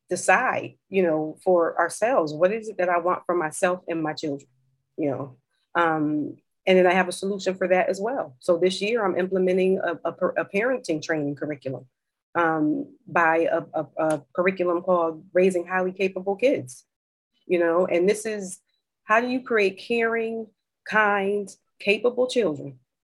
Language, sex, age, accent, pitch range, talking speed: English, female, 30-49, American, 165-205 Hz, 165 wpm